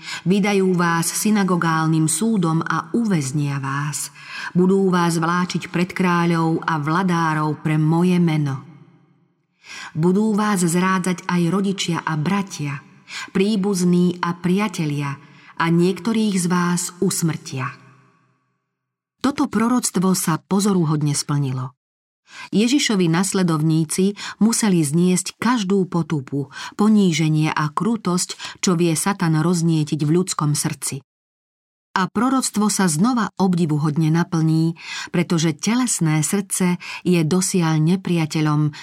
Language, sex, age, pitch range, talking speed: Slovak, female, 40-59, 155-185 Hz, 100 wpm